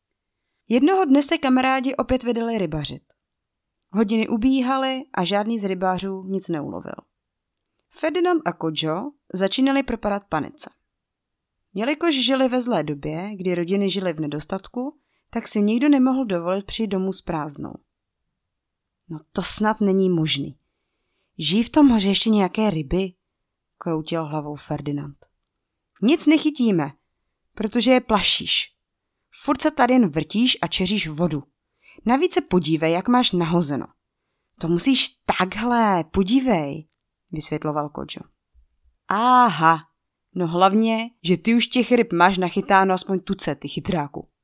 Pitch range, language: 160-240 Hz, Czech